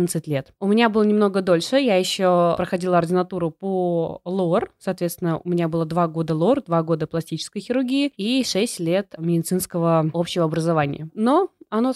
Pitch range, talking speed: 170-215 Hz, 155 wpm